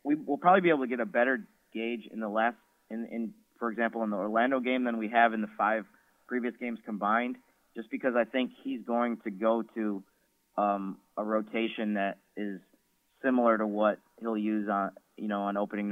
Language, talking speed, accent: English, 200 wpm, American